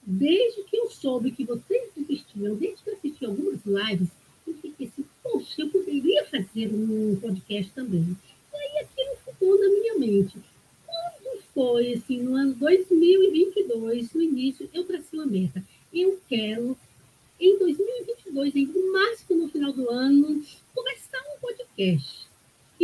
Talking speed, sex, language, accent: 145 wpm, female, Portuguese, Brazilian